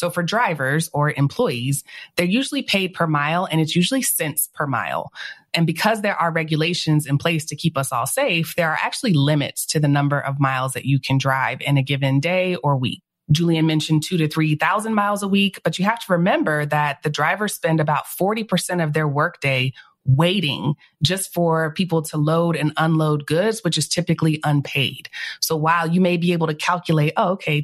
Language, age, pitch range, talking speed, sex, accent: English, 30-49, 145-175 Hz, 200 wpm, female, American